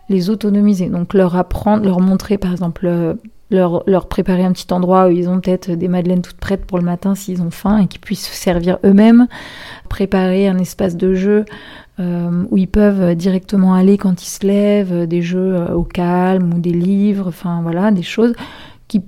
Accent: French